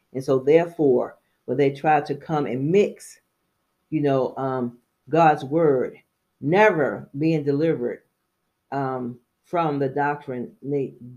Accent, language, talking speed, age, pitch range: American, English, 120 wpm, 40-59, 130-160 Hz